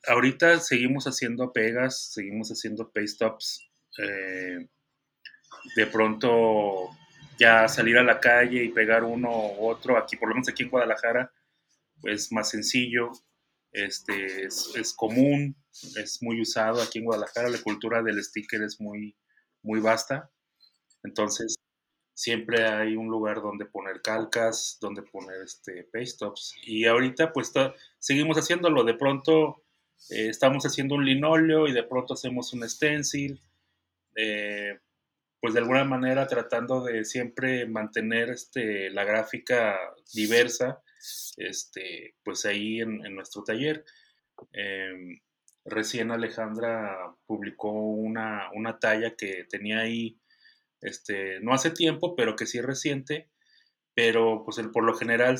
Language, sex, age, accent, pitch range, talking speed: English, male, 30-49, Mexican, 110-130 Hz, 135 wpm